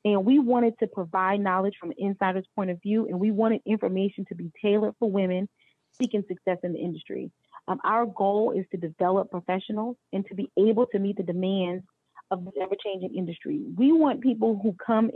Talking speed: 200 wpm